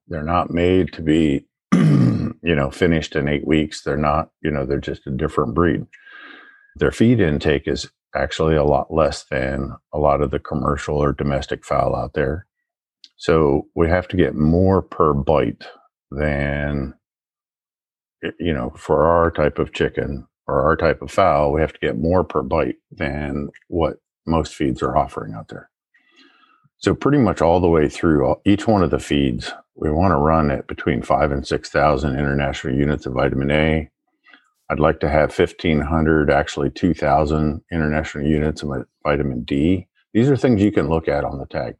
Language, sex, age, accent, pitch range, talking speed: English, male, 50-69, American, 70-90 Hz, 175 wpm